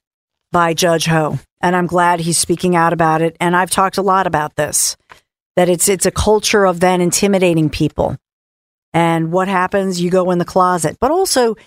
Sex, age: female, 50-69